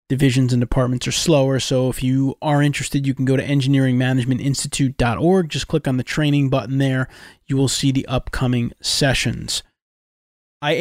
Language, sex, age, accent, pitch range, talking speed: English, male, 30-49, American, 125-150 Hz, 160 wpm